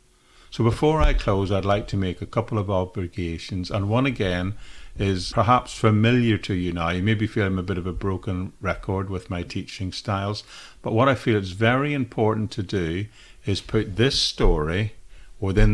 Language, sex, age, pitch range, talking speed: English, male, 50-69, 90-115 Hz, 185 wpm